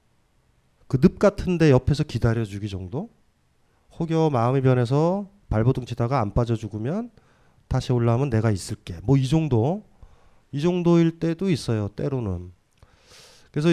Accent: native